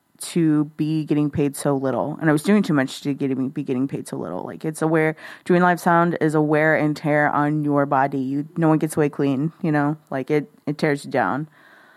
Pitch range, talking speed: 150-180 Hz, 240 wpm